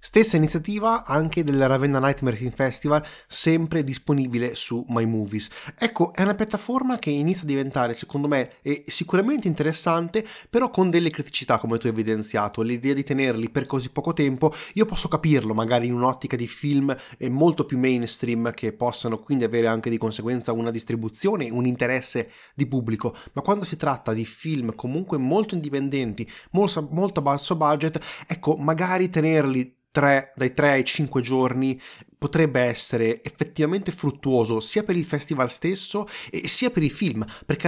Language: Italian